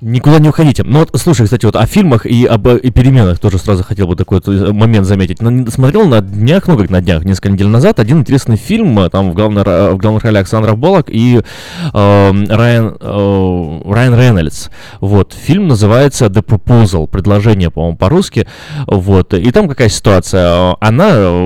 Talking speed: 170 wpm